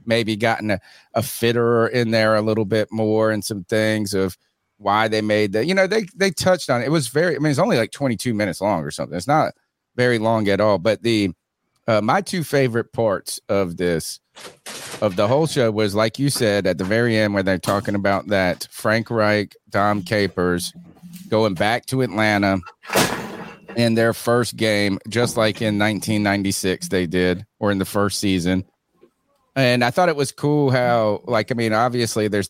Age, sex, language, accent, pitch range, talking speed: 30-49, male, English, American, 100-120 Hz, 195 wpm